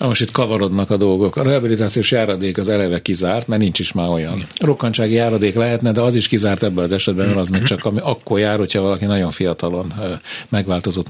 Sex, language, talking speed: male, Hungarian, 205 wpm